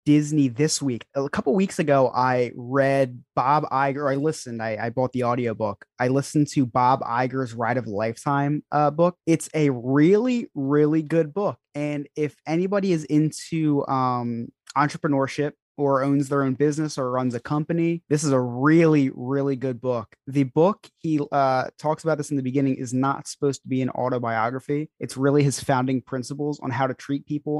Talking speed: 185 wpm